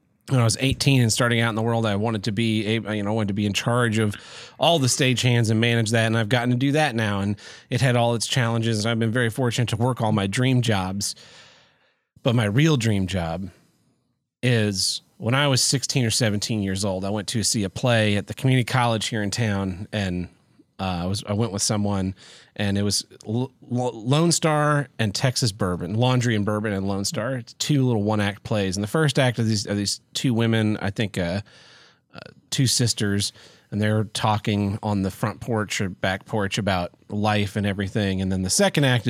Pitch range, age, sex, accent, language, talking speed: 105-125 Hz, 30-49, male, American, English, 220 wpm